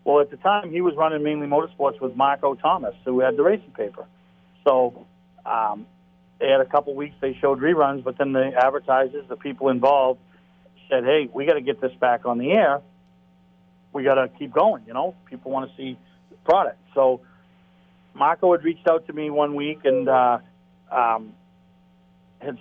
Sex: male